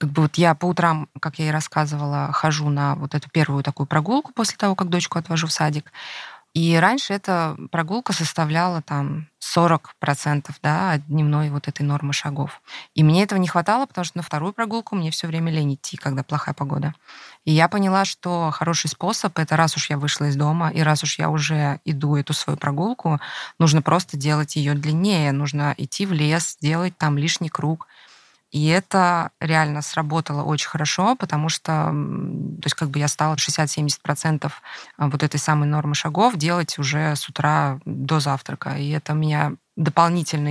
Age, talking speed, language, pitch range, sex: 20-39, 180 wpm, Russian, 145-170 Hz, female